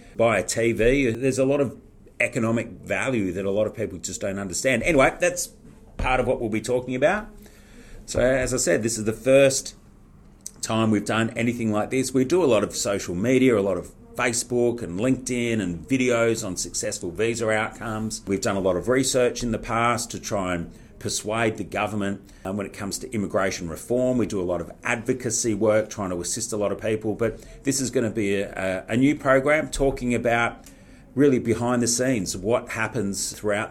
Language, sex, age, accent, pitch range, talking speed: English, male, 40-59, Australian, 105-125 Hz, 200 wpm